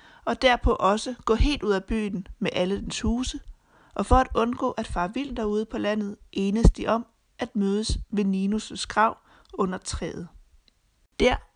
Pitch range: 200-230 Hz